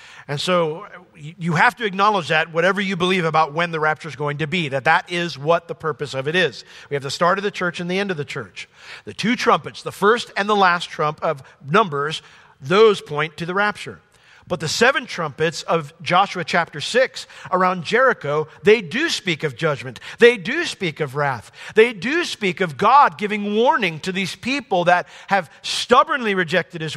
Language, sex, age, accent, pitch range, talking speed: English, male, 50-69, American, 130-195 Hz, 200 wpm